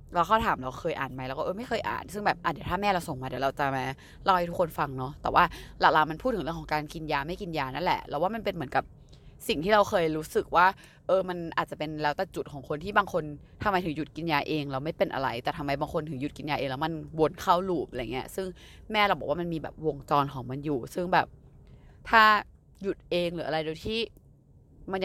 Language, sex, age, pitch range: Thai, female, 20-39, 150-210 Hz